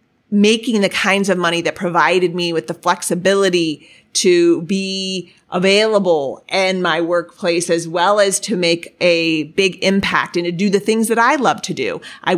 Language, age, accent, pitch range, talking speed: English, 30-49, American, 175-220 Hz, 175 wpm